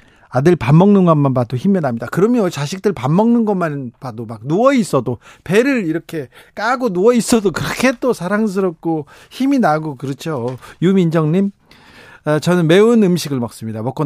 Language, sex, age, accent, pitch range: Korean, male, 40-59, native, 135-200 Hz